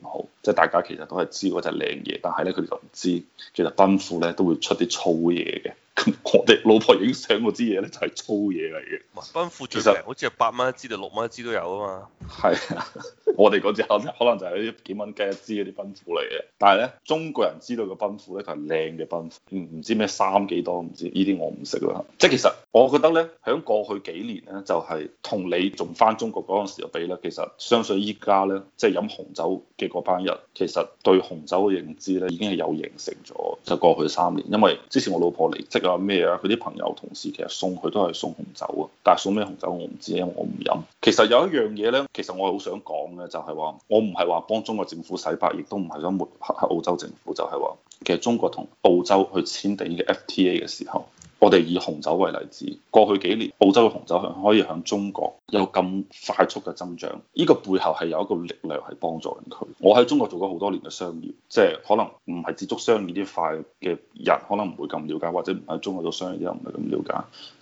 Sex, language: male, Chinese